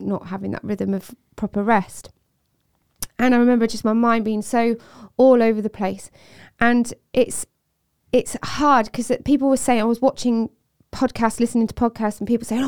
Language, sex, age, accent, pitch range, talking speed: English, female, 20-39, British, 195-240 Hz, 175 wpm